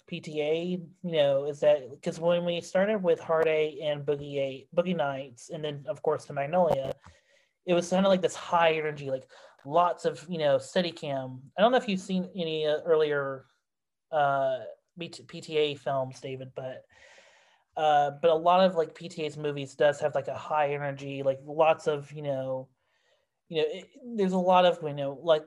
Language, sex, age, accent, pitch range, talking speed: English, male, 30-49, American, 150-185 Hz, 190 wpm